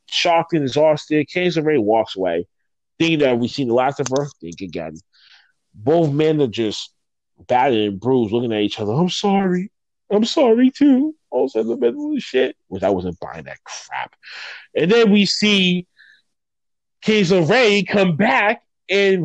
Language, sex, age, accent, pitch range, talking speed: English, male, 30-49, American, 145-230 Hz, 155 wpm